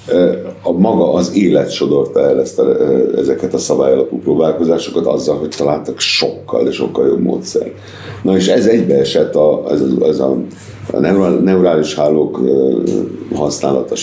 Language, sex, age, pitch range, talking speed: Hungarian, male, 60-79, 65-95 Hz, 135 wpm